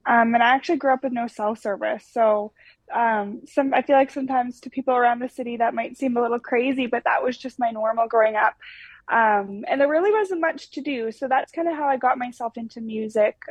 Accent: American